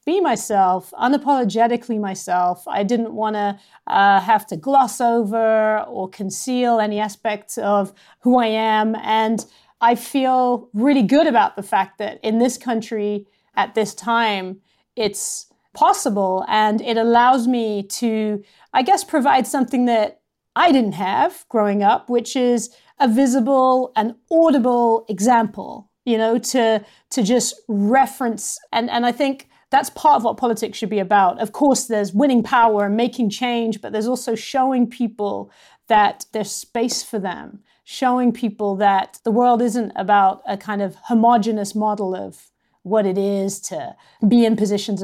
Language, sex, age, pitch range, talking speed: English, female, 30-49, 210-250 Hz, 155 wpm